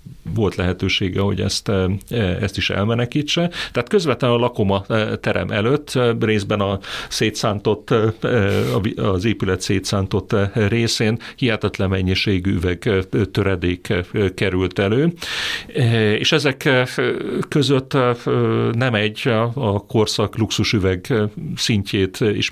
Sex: male